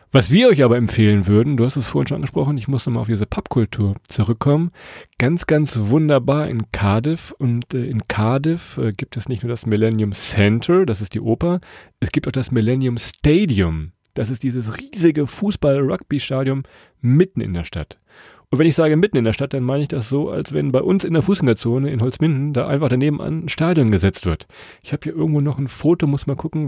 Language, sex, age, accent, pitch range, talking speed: German, male, 40-59, German, 115-150 Hz, 210 wpm